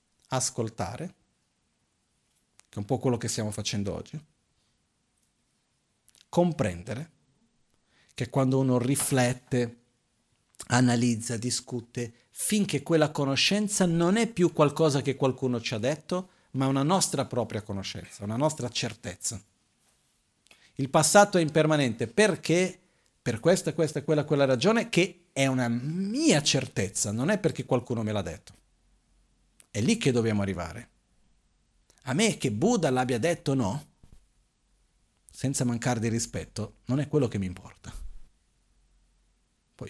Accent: native